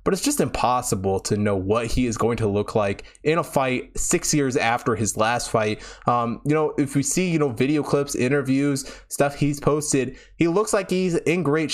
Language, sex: English, male